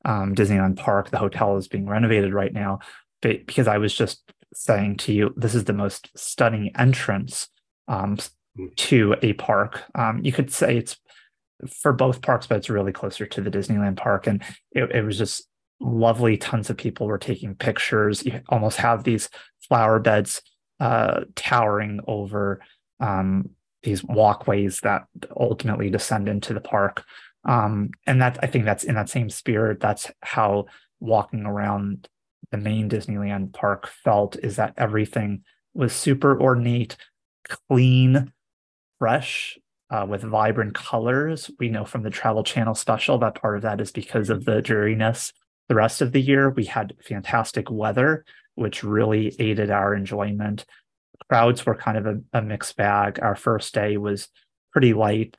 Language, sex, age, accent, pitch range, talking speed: English, male, 30-49, American, 100-115 Hz, 160 wpm